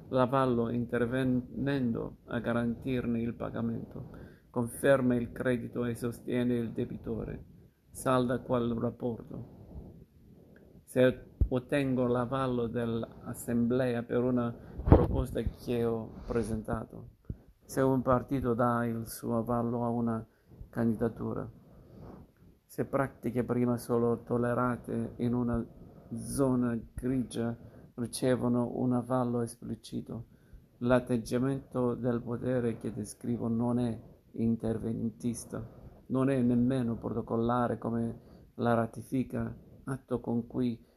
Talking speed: 100 wpm